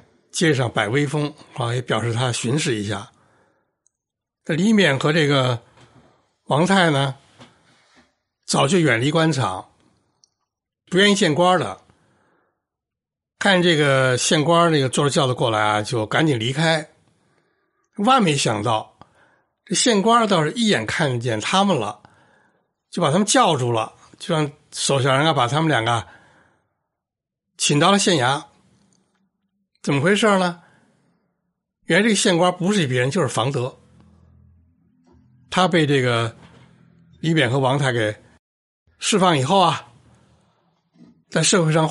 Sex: male